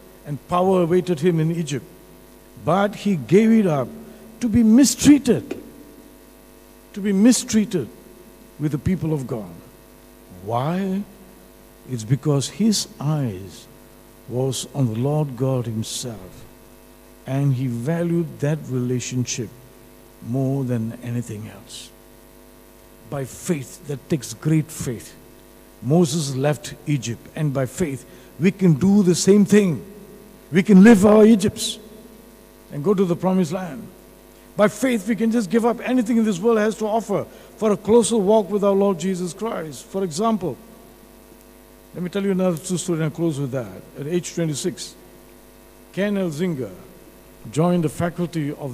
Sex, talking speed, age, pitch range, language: male, 145 wpm, 60-79, 120-190 Hz, English